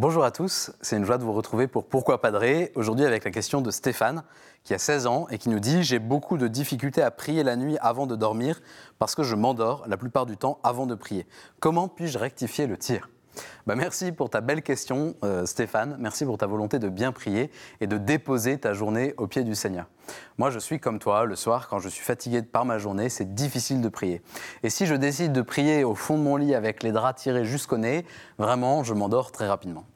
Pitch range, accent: 115-155 Hz, French